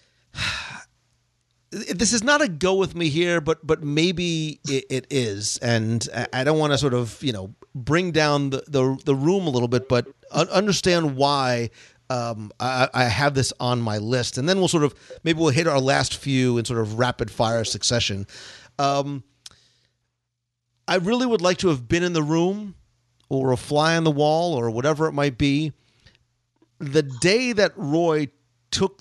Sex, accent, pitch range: male, American, 120-165 Hz